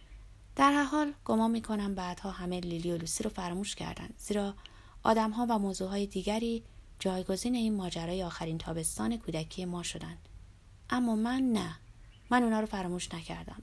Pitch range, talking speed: 165-225 Hz, 160 wpm